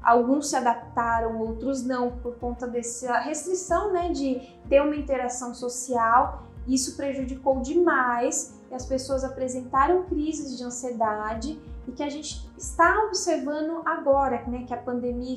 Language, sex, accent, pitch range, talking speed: Portuguese, female, Brazilian, 250-295 Hz, 140 wpm